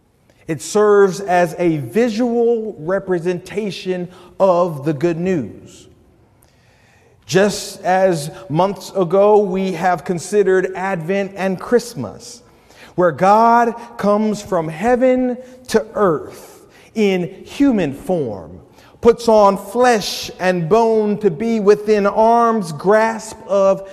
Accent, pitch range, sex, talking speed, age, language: American, 170-220 Hz, male, 105 wpm, 40-59, English